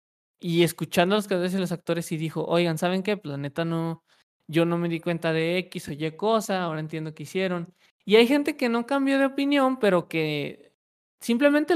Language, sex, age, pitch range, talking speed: Spanish, male, 20-39, 170-225 Hz, 220 wpm